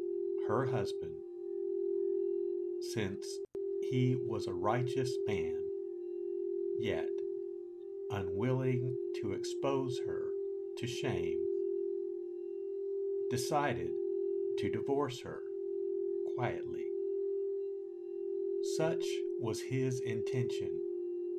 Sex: male